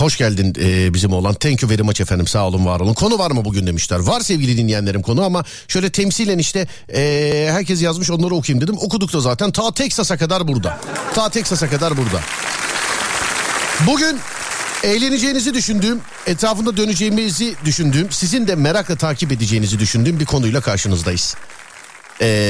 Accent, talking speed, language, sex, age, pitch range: native, 155 wpm, Turkish, male, 50-69, 115-185 Hz